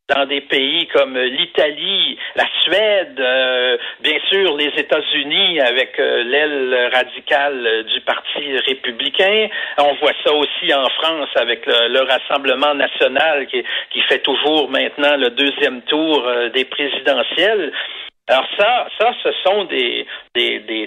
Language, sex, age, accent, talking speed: French, male, 60-79, Canadian, 140 wpm